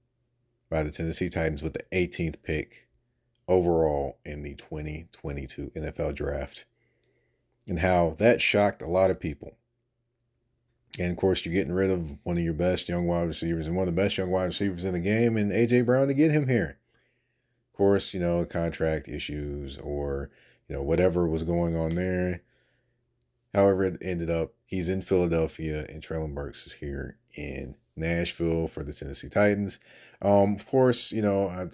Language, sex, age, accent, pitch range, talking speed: English, male, 30-49, American, 80-110 Hz, 175 wpm